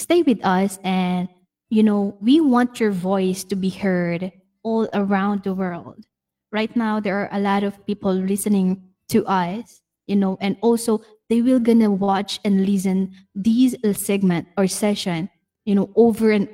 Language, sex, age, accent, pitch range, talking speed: English, female, 20-39, Filipino, 185-225 Hz, 165 wpm